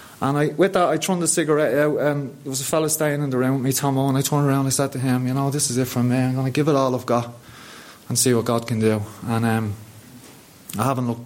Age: 30-49